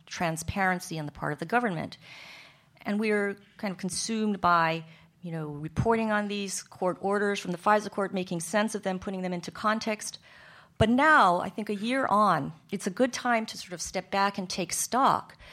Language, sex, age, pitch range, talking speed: English, female, 40-59, 165-200 Hz, 200 wpm